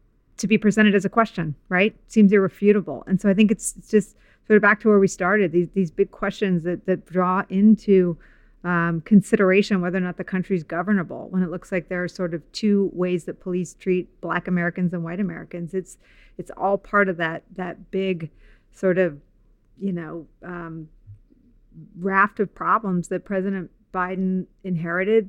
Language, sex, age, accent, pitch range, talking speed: English, female, 40-59, American, 175-200 Hz, 185 wpm